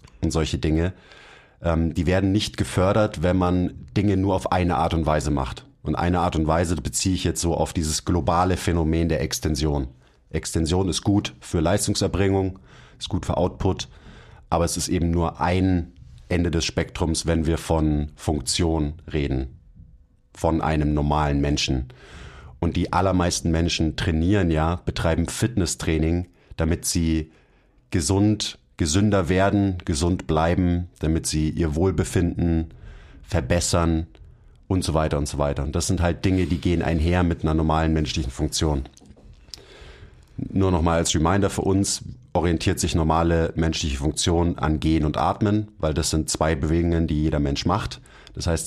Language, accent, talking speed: German, German, 155 wpm